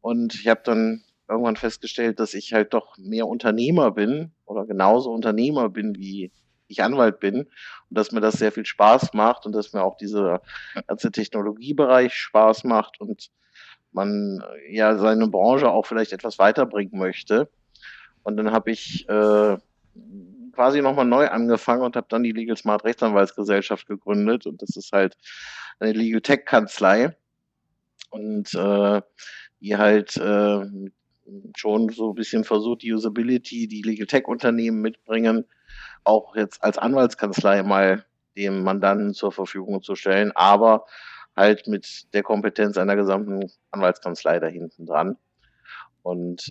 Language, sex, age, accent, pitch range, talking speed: German, male, 50-69, German, 100-115 Hz, 145 wpm